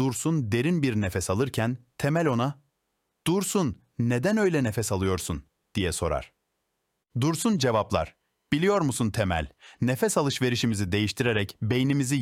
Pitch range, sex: 105-145 Hz, male